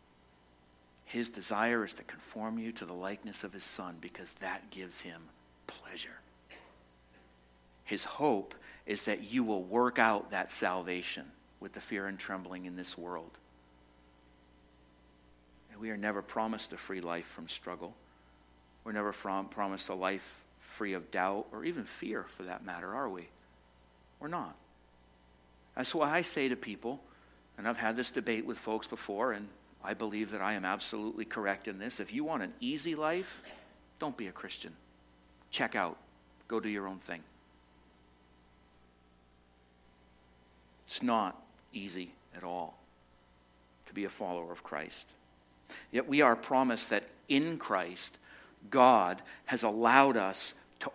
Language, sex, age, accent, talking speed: English, male, 50-69, American, 150 wpm